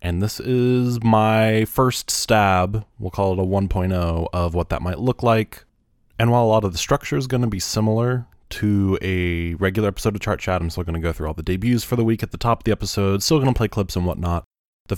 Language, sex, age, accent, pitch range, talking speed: English, male, 20-39, American, 90-110 Hz, 235 wpm